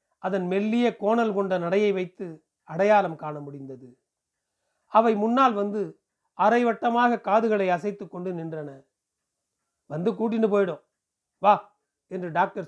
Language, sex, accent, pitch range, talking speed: Tamil, male, native, 165-215 Hz, 105 wpm